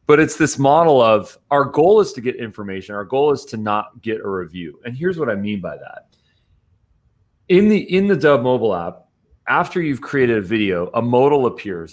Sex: male